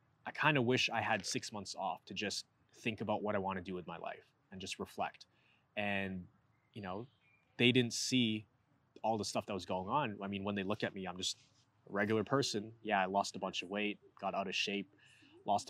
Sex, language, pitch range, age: male, English, 100-130 Hz, 20-39